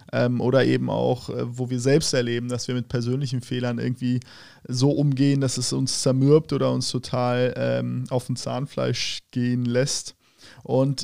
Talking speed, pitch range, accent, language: 160 wpm, 125-140 Hz, German, German